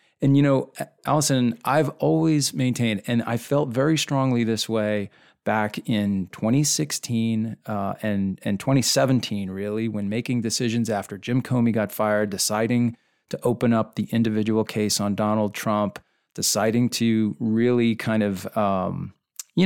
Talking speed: 145 wpm